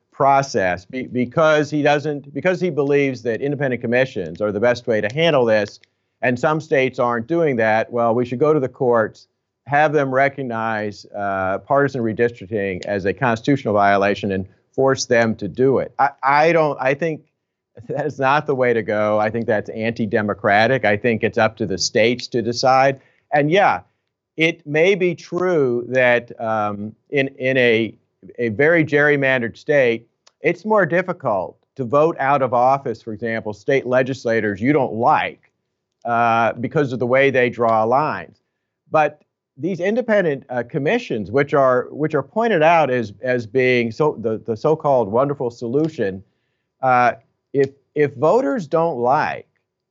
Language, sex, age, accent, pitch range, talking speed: English, male, 50-69, American, 115-150 Hz, 160 wpm